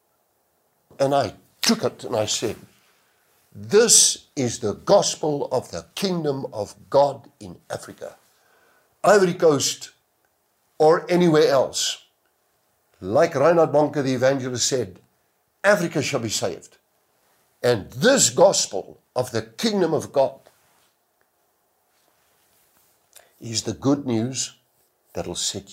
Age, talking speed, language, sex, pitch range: 60-79, 110 wpm, English, male, 125-180 Hz